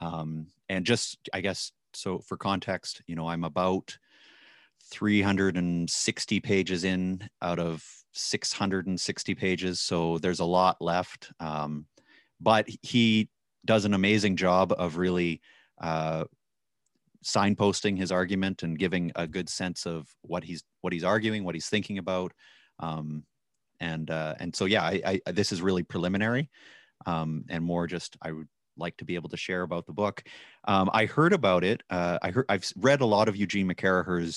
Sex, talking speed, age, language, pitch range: male, 165 wpm, 30-49, English, 85-100 Hz